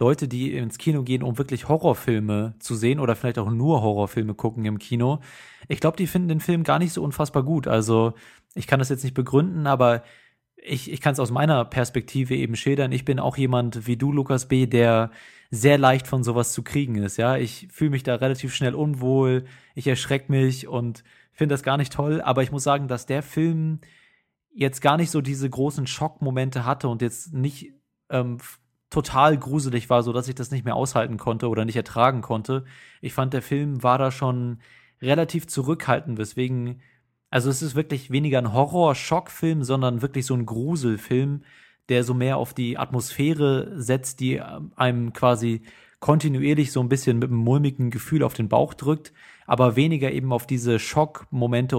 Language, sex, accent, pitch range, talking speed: German, male, German, 120-140 Hz, 190 wpm